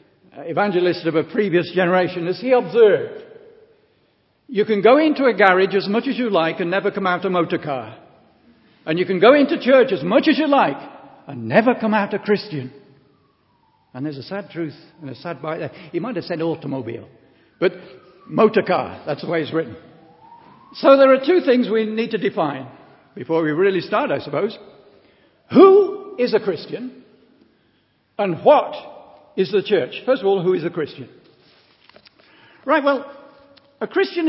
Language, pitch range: English, 175-255 Hz